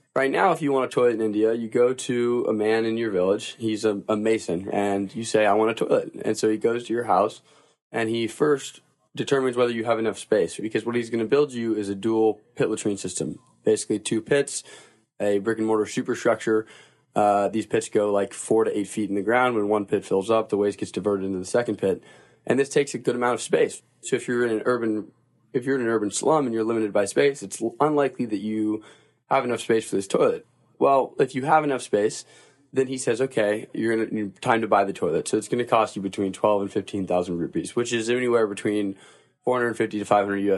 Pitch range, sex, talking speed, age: 105-125 Hz, male, 250 wpm, 20-39